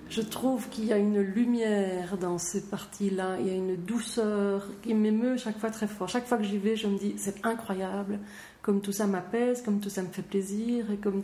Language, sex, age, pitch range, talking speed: French, female, 30-49, 185-225 Hz, 240 wpm